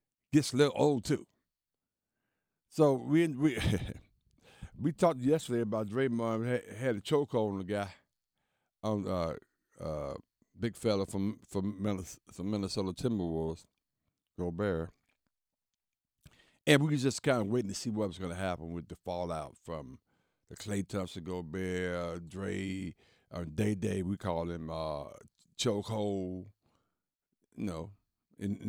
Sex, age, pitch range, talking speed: male, 60-79, 95-135 Hz, 140 wpm